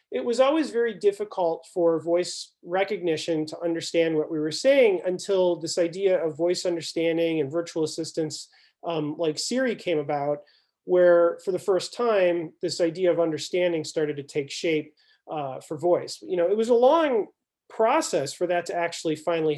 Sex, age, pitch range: male, 30-49, 160-195 Hz